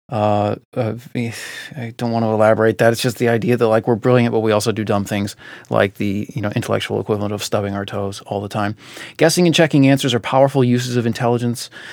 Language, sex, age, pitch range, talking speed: English, male, 30-49, 110-125 Hz, 215 wpm